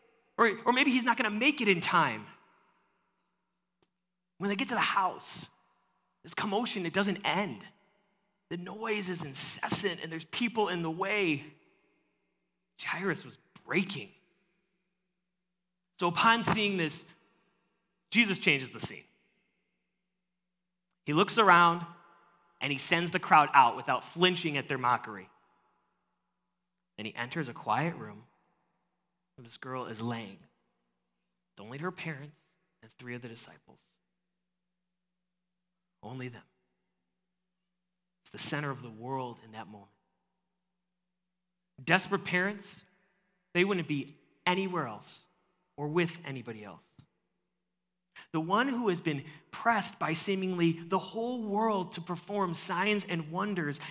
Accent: American